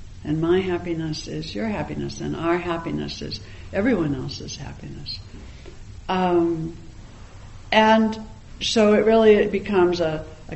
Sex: female